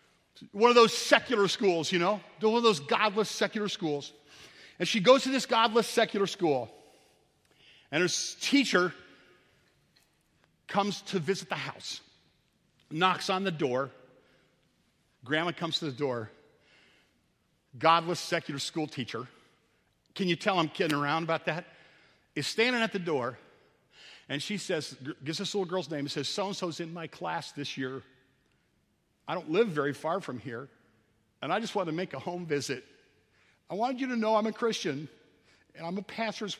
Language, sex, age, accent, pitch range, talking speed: English, male, 50-69, American, 145-220 Hz, 160 wpm